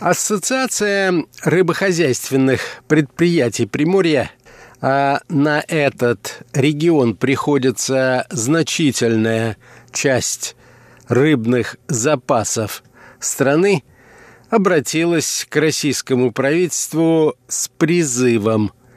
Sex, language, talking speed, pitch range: male, Russian, 65 wpm, 125-155 Hz